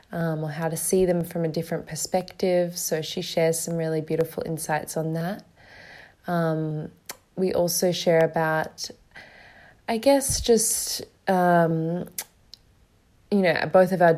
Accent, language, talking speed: Australian, English, 140 wpm